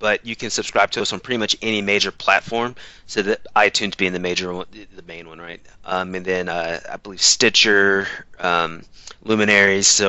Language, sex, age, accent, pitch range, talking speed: English, male, 30-49, American, 95-115 Hz, 195 wpm